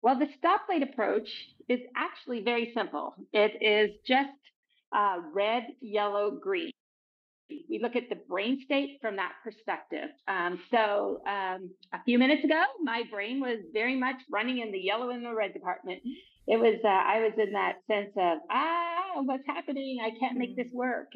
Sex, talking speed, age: female, 175 wpm, 40-59